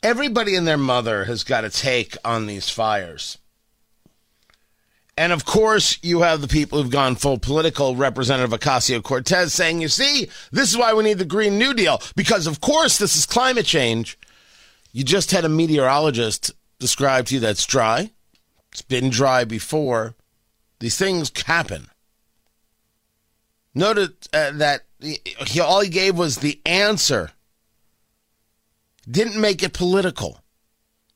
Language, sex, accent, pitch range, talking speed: English, male, American, 125-190 Hz, 145 wpm